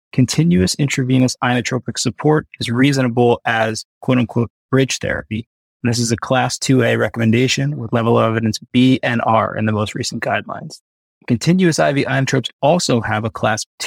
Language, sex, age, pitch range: English, male, 20-39, 115-130 Hz